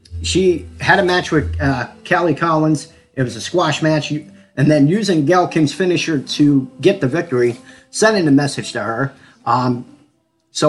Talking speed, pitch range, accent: 170 wpm, 130-170 Hz, American